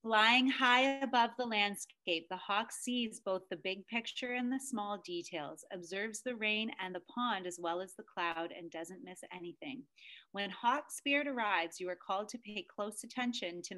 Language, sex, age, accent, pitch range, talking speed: English, female, 30-49, American, 185-240 Hz, 185 wpm